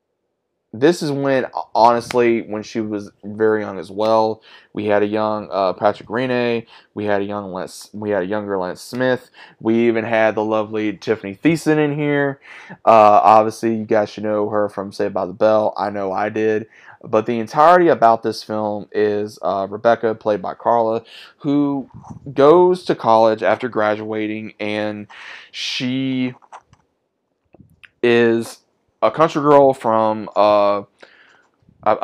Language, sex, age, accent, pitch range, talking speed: English, male, 20-39, American, 105-125 Hz, 150 wpm